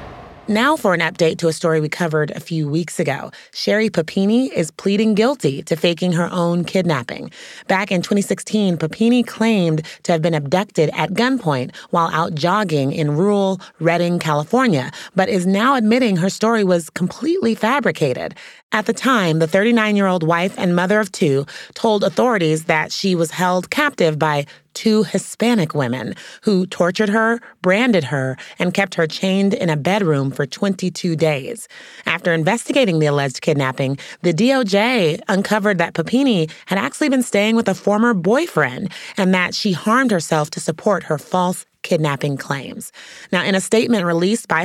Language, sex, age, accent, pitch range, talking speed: English, female, 30-49, American, 155-210 Hz, 165 wpm